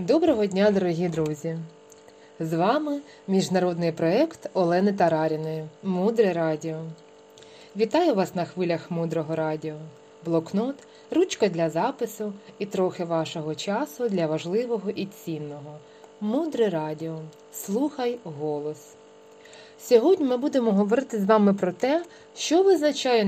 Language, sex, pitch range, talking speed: Ukrainian, female, 165-230 Hz, 115 wpm